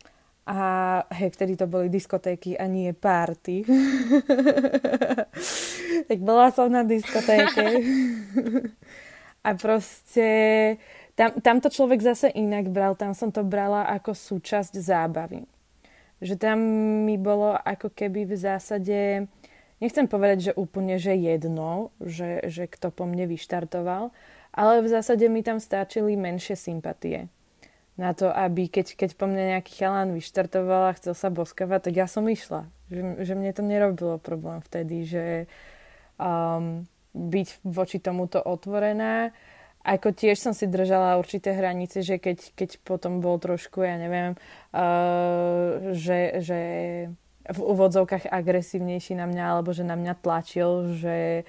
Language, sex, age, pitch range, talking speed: Slovak, female, 20-39, 175-210 Hz, 135 wpm